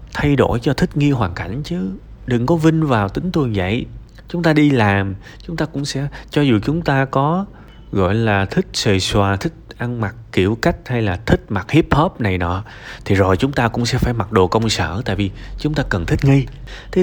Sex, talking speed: male, 230 wpm